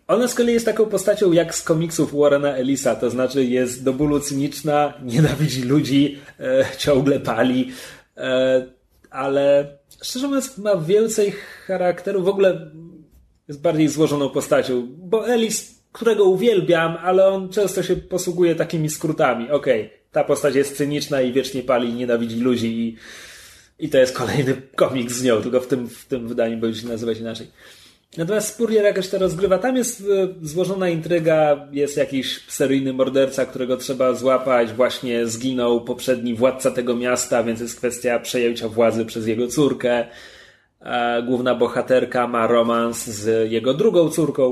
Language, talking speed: Polish, 150 wpm